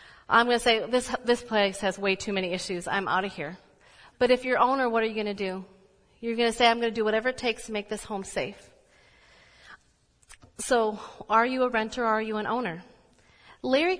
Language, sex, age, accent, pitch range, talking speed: English, female, 40-59, American, 195-245 Hz, 225 wpm